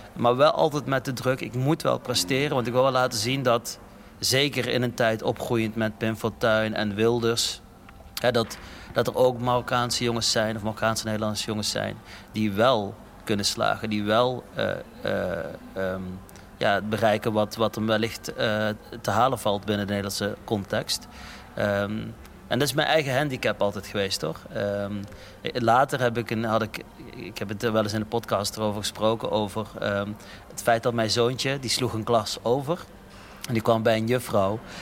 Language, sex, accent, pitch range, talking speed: Dutch, male, Dutch, 105-125 Hz, 190 wpm